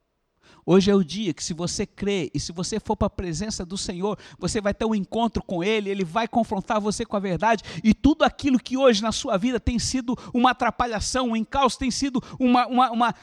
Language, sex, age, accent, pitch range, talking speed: Portuguese, male, 60-79, Brazilian, 195-280 Hz, 220 wpm